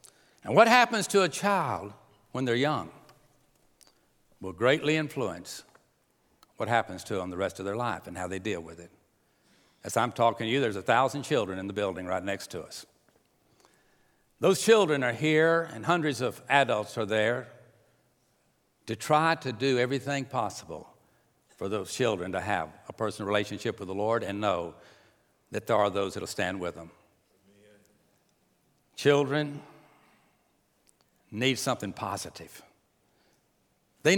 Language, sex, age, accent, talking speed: English, male, 60-79, American, 150 wpm